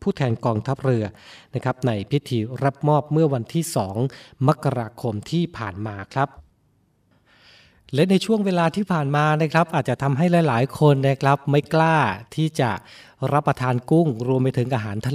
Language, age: Thai, 20-39